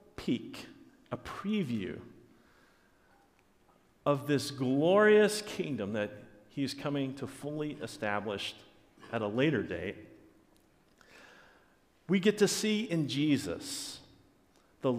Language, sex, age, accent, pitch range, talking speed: English, male, 50-69, American, 135-190 Hz, 95 wpm